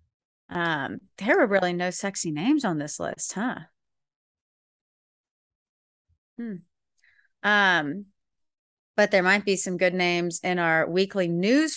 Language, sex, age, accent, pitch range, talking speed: English, female, 30-49, American, 170-215 Hz, 120 wpm